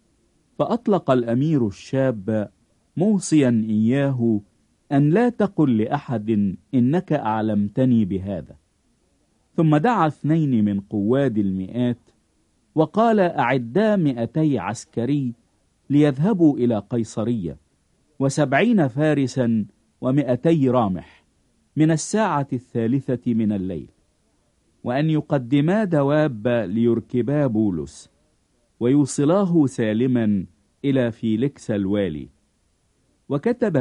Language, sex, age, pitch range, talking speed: English, male, 50-69, 105-150 Hz, 80 wpm